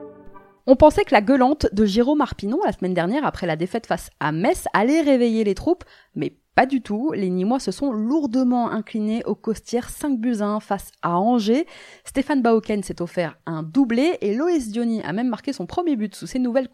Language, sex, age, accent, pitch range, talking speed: French, female, 20-39, French, 195-265 Hz, 195 wpm